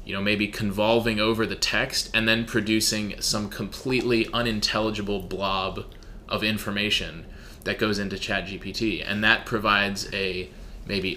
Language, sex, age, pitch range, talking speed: English, male, 20-39, 95-110 Hz, 135 wpm